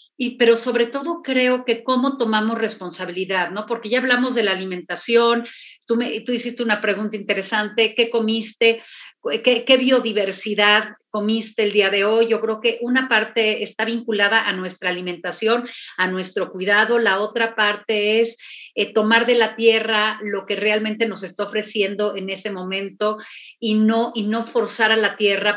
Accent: Mexican